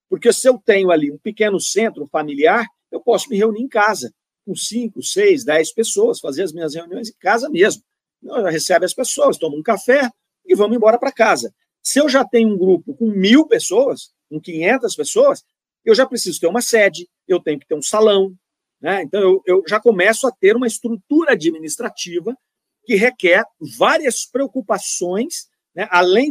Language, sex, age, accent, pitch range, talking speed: Portuguese, male, 50-69, Brazilian, 170-245 Hz, 180 wpm